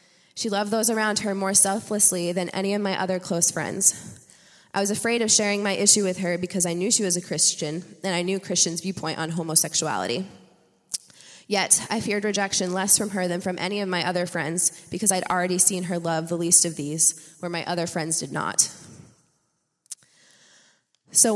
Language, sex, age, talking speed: English, female, 20-39, 190 wpm